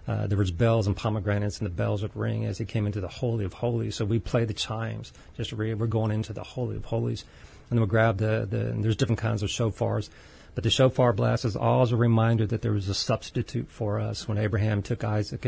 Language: English